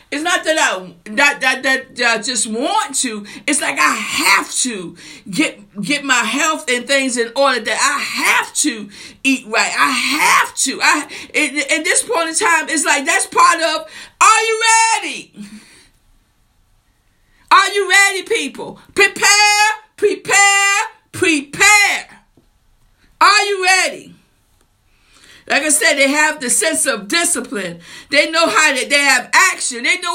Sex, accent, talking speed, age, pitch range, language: female, American, 150 wpm, 50-69, 260-360 Hz, English